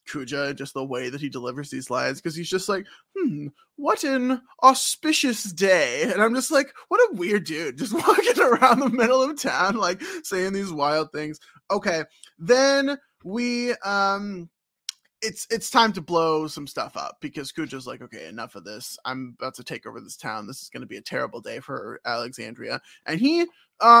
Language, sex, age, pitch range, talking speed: English, male, 20-39, 150-230 Hz, 190 wpm